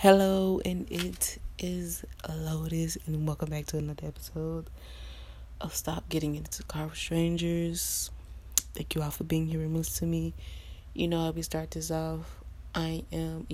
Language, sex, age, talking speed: English, female, 20-39, 165 wpm